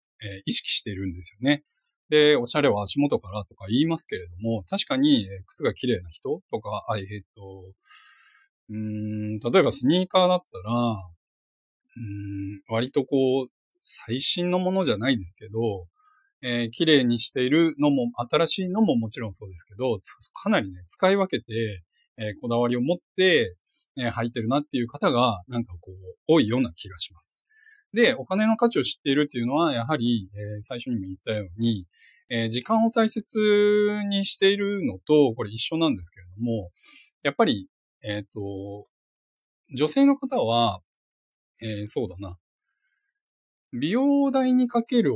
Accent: native